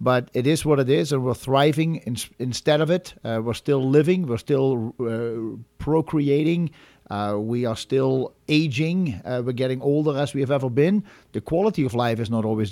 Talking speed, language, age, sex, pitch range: 195 wpm, English, 50-69, male, 120-150 Hz